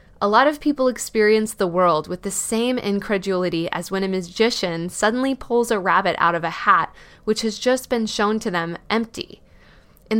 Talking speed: 190 wpm